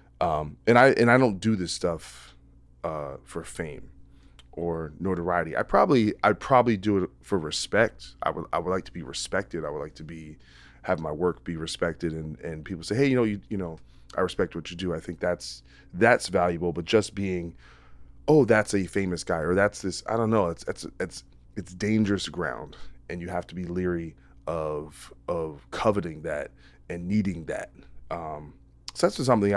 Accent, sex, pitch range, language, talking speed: American, male, 70-95 Hz, English, 195 wpm